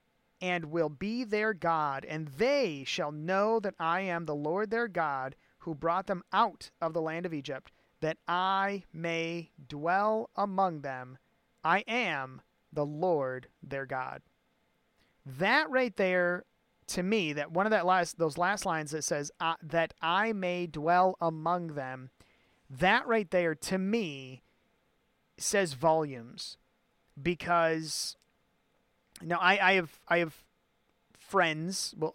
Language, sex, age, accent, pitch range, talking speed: English, male, 30-49, American, 160-200 Hz, 140 wpm